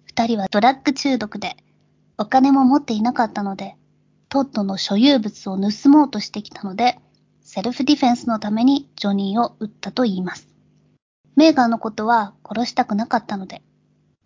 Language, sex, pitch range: Japanese, male, 205-255 Hz